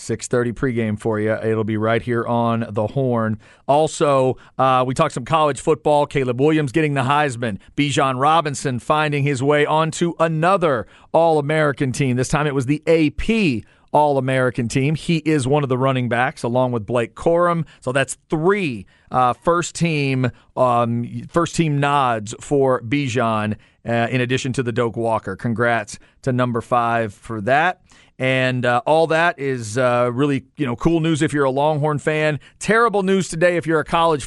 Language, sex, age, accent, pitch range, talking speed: English, male, 40-59, American, 125-160 Hz, 175 wpm